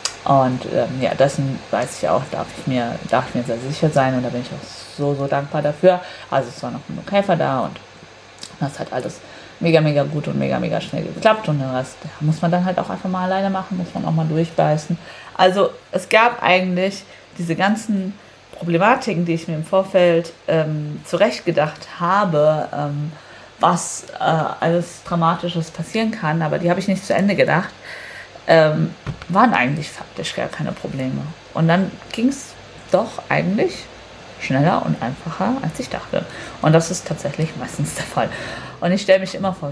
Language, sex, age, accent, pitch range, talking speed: German, female, 30-49, German, 145-190 Hz, 185 wpm